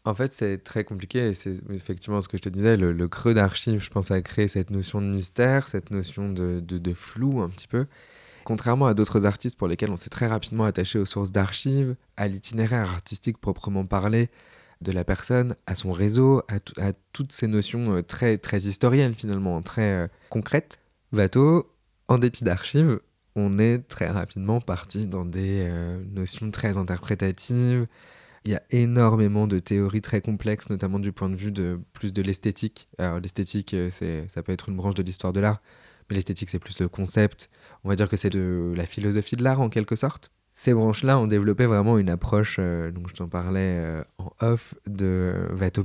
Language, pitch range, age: French, 95-115 Hz, 20-39